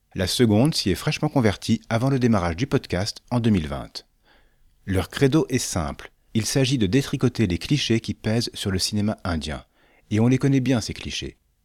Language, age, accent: French, 40-59, French